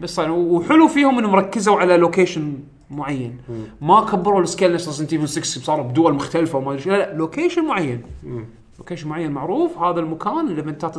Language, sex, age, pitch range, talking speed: Arabic, male, 30-49, 150-215 Hz, 165 wpm